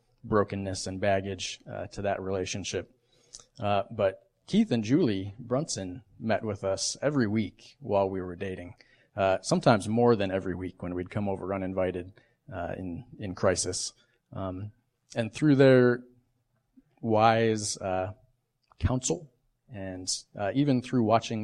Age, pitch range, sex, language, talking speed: 30-49, 95-120 Hz, male, English, 135 wpm